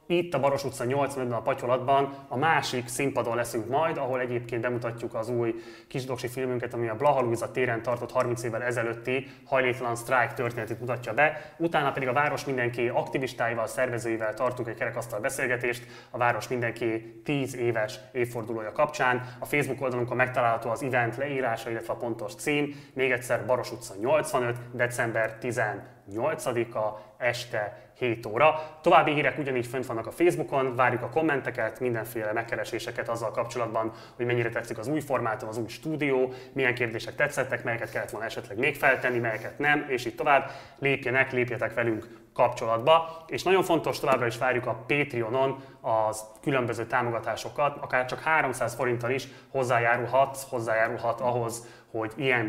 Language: Hungarian